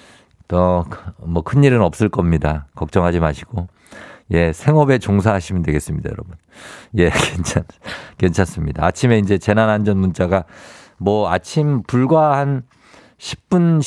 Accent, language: native, Korean